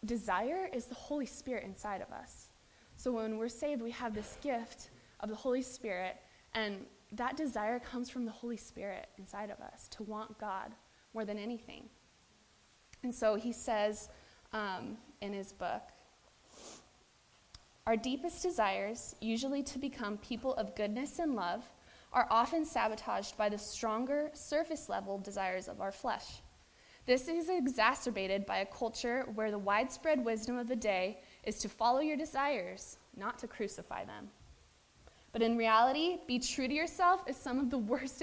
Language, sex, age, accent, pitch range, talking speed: English, female, 20-39, American, 210-260 Hz, 160 wpm